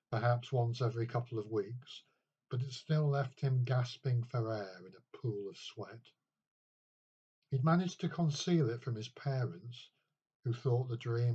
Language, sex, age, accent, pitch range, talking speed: English, male, 50-69, British, 115-135 Hz, 165 wpm